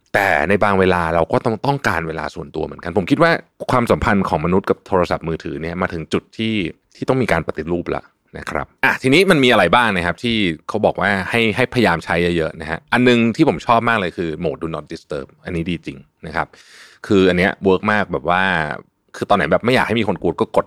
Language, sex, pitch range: Thai, male, 85-110 Hz